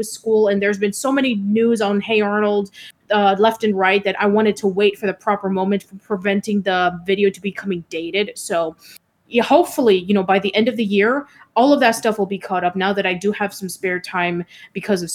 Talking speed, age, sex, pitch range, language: 230 wpm, 20-39, female, 195-240 Hz, English